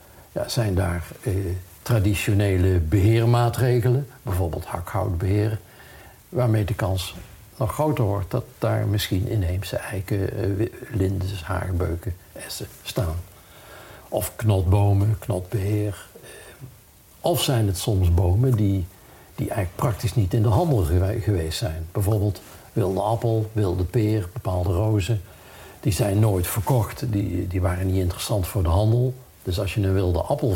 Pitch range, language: 95-115 Hz, Dutch